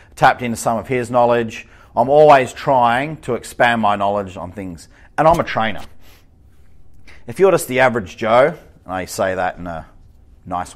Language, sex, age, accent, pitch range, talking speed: English, male, 30-49, Australian, 95-135 Hz, 180 wpm